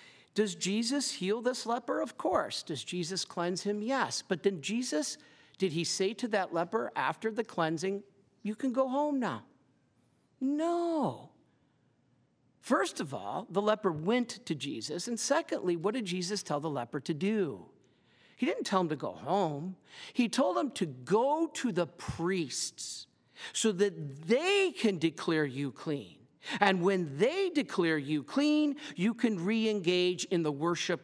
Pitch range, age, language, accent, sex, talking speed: 165-240 Hz, 50-69, English, American, male, 160 wpm